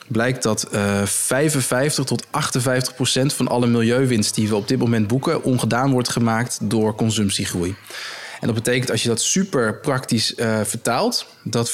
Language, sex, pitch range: Dutch, male, 115-130 Hz